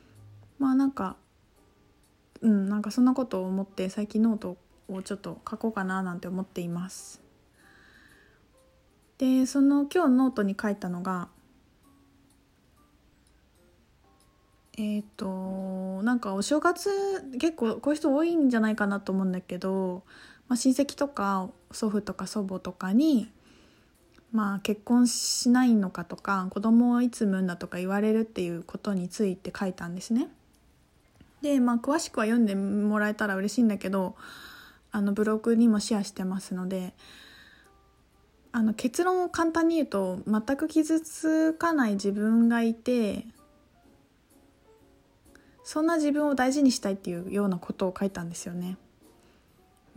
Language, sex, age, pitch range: Japanese, female, 20-39, 190-255 Hz